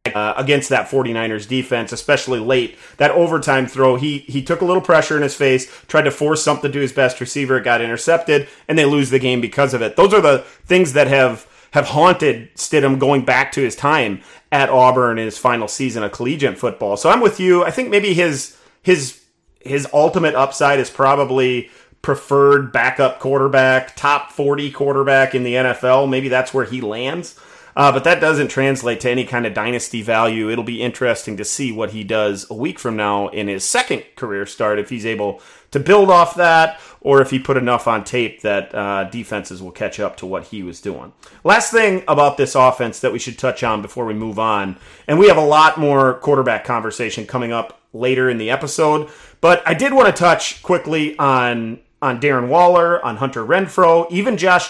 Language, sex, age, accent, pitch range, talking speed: English, male, 30-49, American, 120-150 Hz, 205 wpm